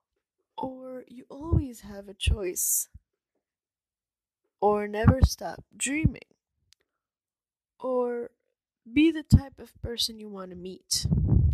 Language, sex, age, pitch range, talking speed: English, female, 20-39, 185-240 Hz, 105 wpm